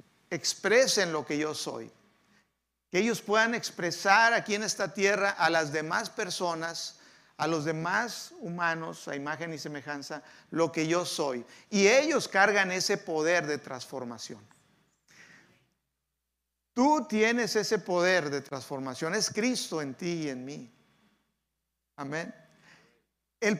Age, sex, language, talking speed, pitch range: 50-69, male, Spanish, 130 wpm, 160-210 Hz